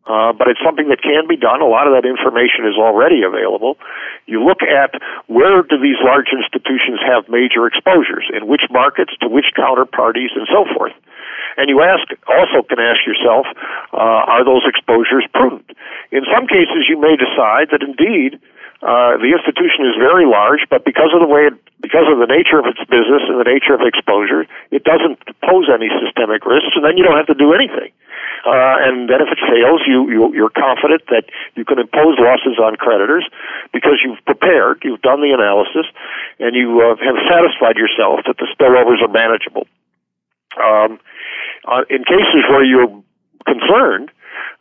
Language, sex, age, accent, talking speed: English, male, 50-69, American, 185 wpm